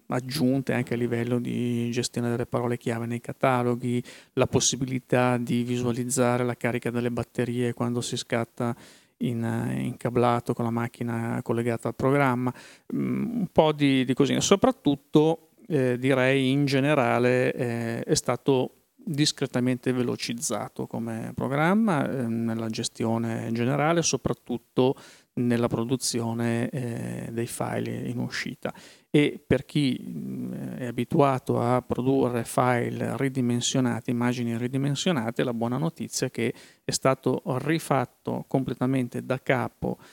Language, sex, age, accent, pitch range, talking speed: Italian, male, 40-59, native, 120-135 Hz, 125 wpm